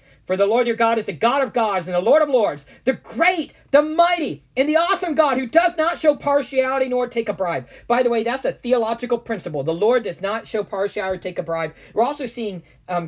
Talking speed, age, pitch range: 245 wpm, 40-59, 165-240 Hz